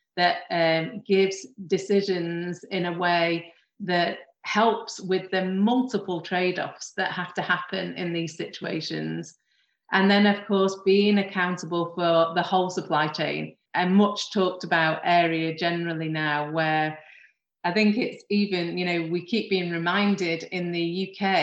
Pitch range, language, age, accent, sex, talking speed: 165-185 Hz, English, 30-49, British, female, 140 wpm